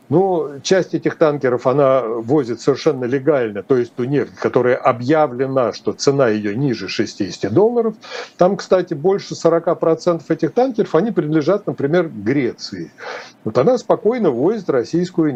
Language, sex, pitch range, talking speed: Russian, male, 155-205 Hz, 135 wpm